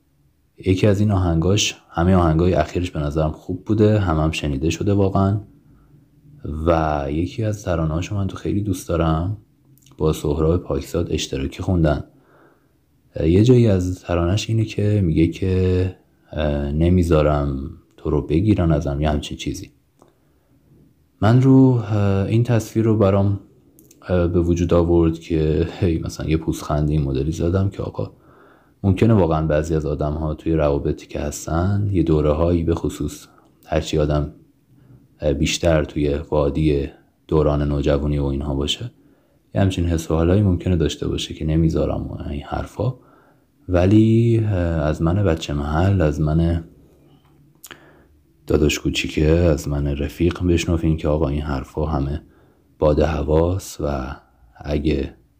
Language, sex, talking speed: Persian, male, 130 wpm